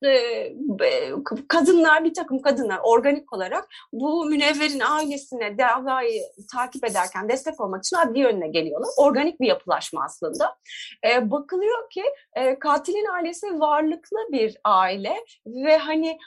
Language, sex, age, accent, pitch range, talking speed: Turkish, female, 30-49, native, 250-330 Hz, 110 wpm